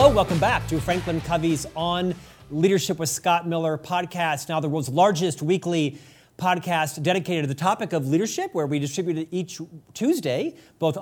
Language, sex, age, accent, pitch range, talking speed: English, male, 40-59, American, 145-185 Hz, 165 wpm